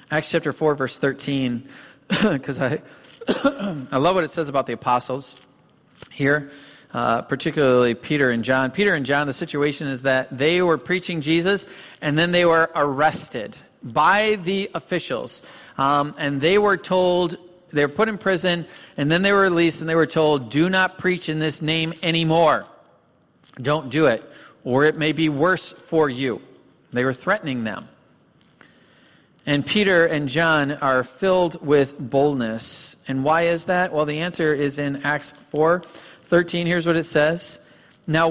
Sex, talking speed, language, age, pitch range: male, 165 wpm, English, 40-59, 140-175 Hz